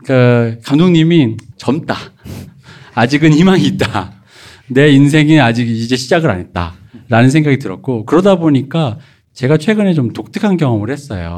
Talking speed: 125 wpm